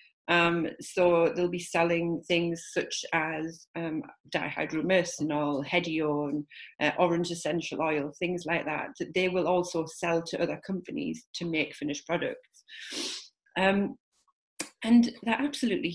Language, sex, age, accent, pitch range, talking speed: English, female, 40-59, British, 170-195 Hz, 125 wpm